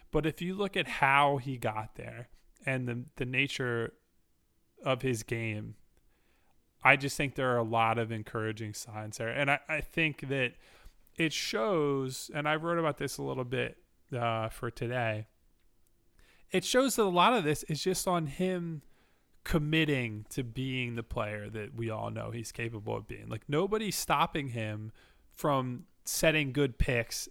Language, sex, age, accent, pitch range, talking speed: English, male, 20-39, American, 115-145 Hz, 170 wpm